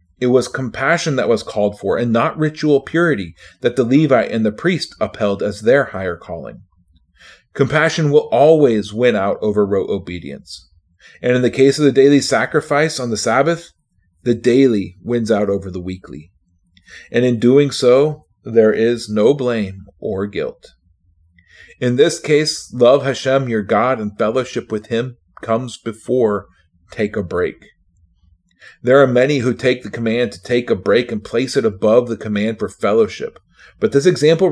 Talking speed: 165 wpm